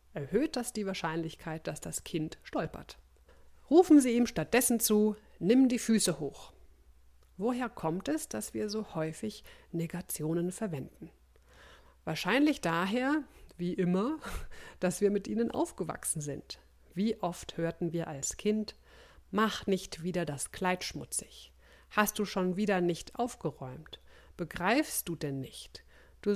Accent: German